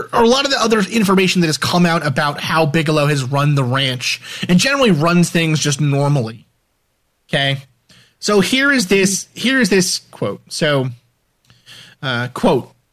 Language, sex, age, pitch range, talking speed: English, male, 30-49, 135-175 Hz, 165 wpm